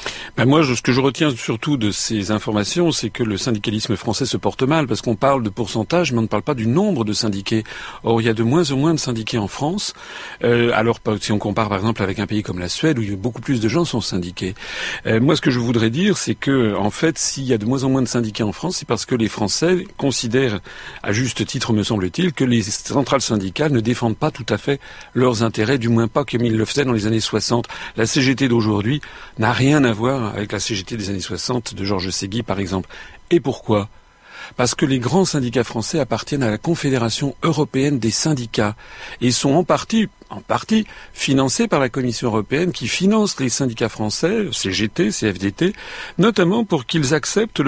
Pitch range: 110-140 Hz